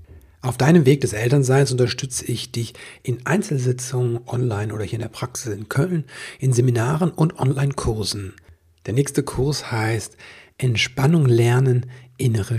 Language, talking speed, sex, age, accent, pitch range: German, 140 wpm, male, 60-79, German, 115-140 Hz